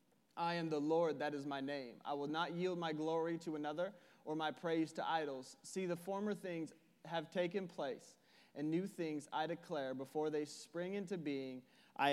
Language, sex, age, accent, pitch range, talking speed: English, male, 30-49, American, 155-195 Hz, 195 wpm